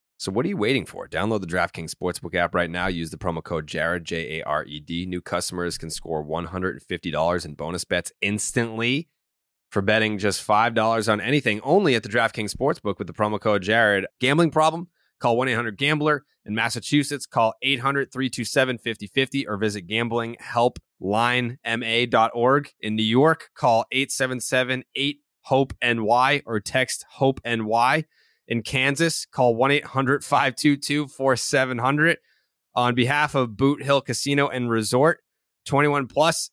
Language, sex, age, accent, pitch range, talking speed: English, male, 20-39, American, 115-140 Hz, 125 wpm